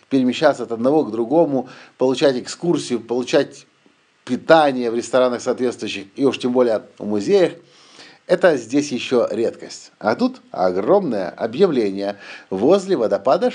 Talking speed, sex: 125 wpm, male